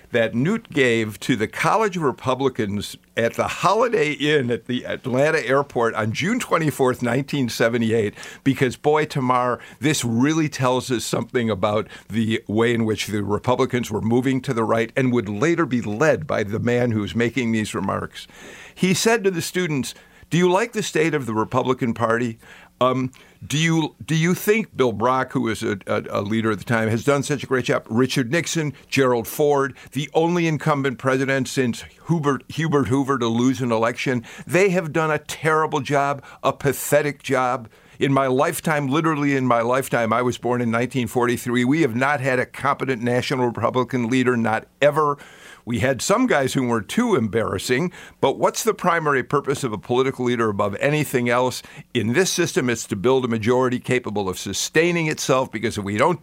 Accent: American